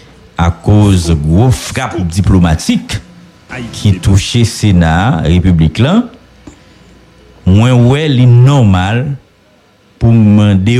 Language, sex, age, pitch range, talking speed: English, male, 60-79, 95-135 Hz, 90 wpm